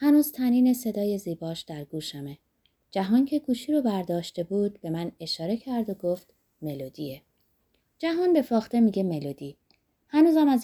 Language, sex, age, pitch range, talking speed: Persian, female, 20-39, 160-245 Hz, 145 wpm